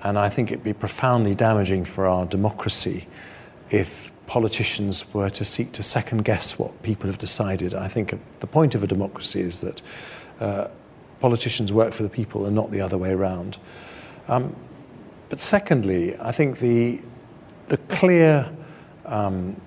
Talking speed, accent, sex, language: 160 wpm, British, male, English